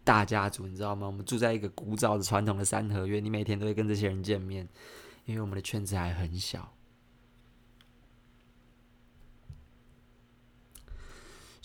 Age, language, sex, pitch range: 20-39, Chinese, male, 95-115 Hz